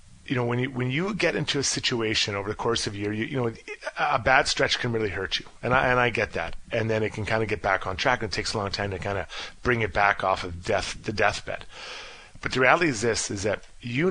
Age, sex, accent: 30-49, male, American